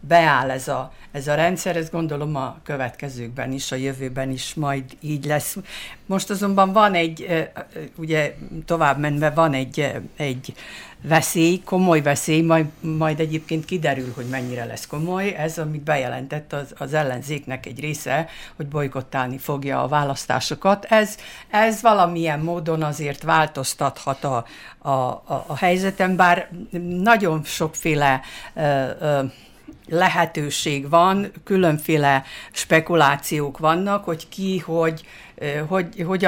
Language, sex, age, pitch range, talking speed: Hungarian, female, 60-79, 145-170 Hz, 125 wpm